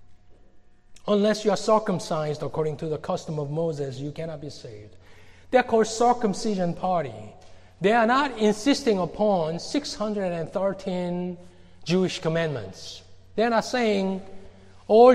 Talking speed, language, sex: 125 wpm, English, male